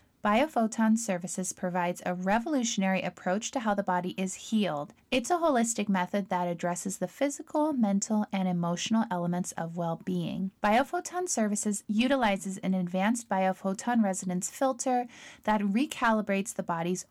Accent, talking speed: American, 135 wpm